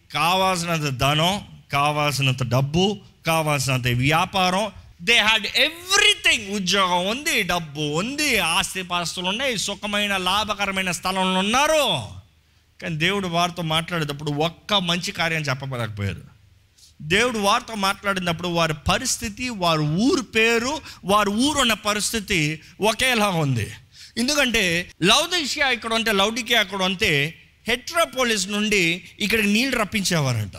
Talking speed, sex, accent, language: 110 wpm, male, native, Telugu